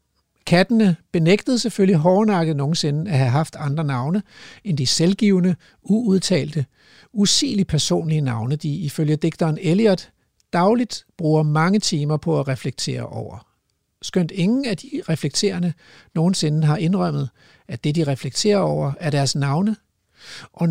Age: 60-79